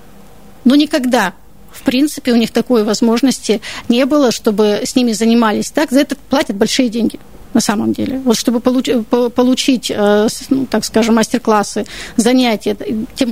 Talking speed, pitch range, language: 145 wpm, 220-265 Hz, Russian